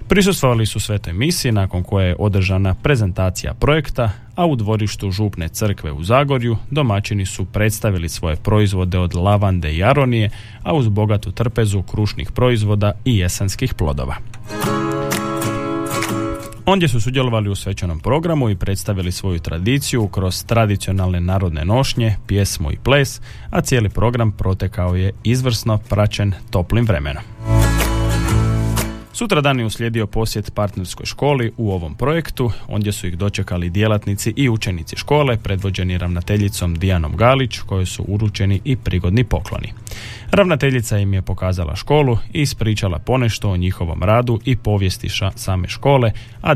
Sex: male